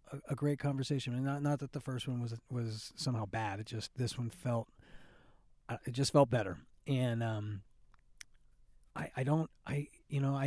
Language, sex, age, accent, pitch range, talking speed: English, male, 40-59, American, 120-155 Hz, 170 wpm